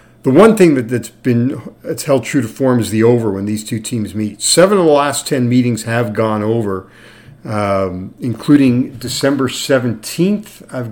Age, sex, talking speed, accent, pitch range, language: 50-69, male, 180 wpm, American, 110-140 Hz, English